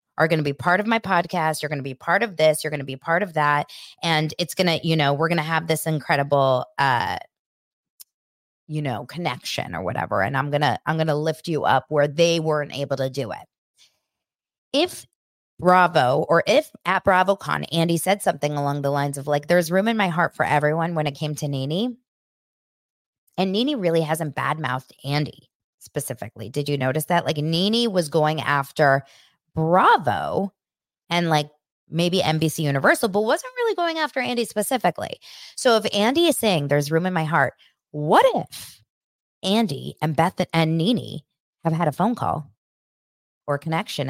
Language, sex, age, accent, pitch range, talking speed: English, female, 20-39, American, 140-180 Hz, 185 wpm